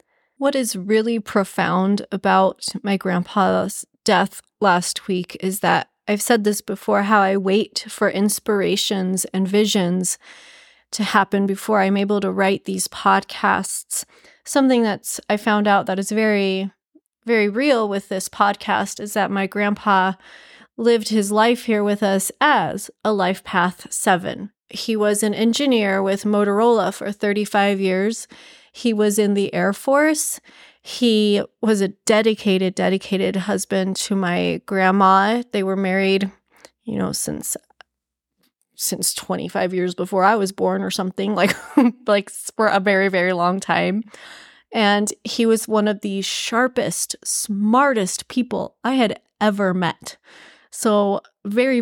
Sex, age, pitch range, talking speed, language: female, 30-49, 195-220 Hz, 140 wpm, English